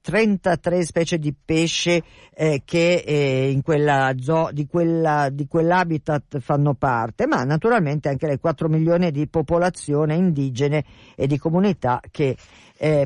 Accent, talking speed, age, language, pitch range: native, 140 wpm, 50-69, Italian, 135-175 Hz